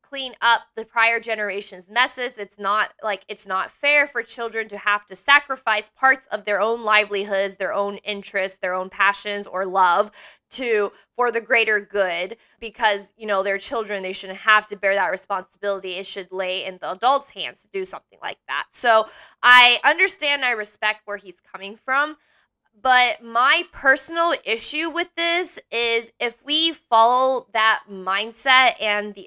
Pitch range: 200-255 Hz